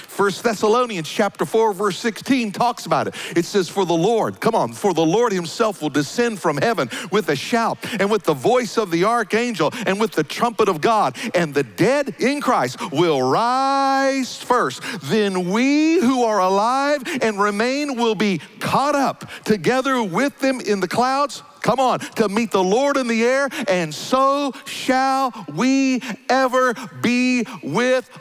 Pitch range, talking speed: 190-255 Hz, 170 wpm